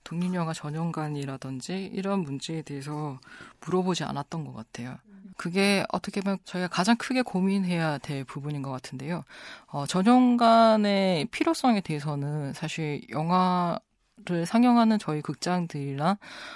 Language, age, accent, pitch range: Korean, 20-39, native, 150-205 Hz